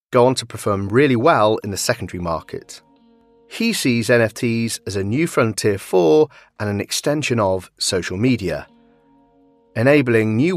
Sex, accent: male, British